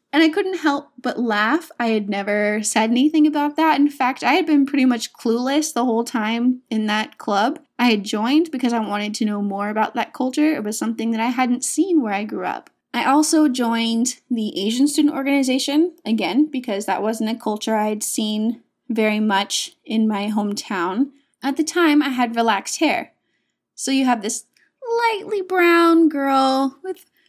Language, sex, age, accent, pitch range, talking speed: English, female, 20-39, American, 225-300 Hz, 185 wpm